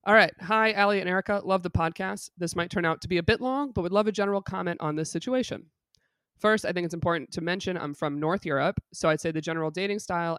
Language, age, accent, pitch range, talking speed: English, 20-39, American, 160-210 Hz, 260 wpm